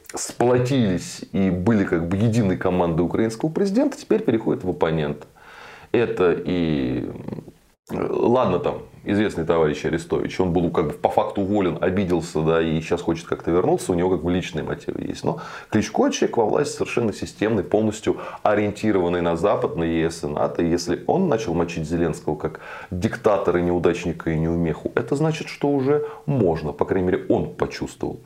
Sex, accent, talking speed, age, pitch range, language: male, native, 165 wpm, 20-39, 80-105 Hz, Russian